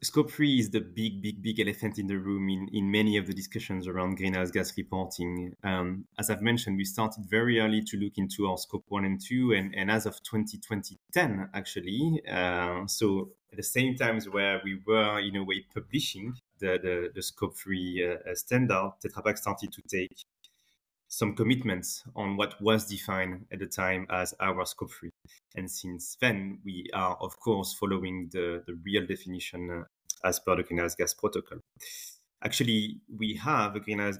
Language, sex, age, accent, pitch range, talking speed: English, male, 30-49, French, 95-110 Hz, 185 wpm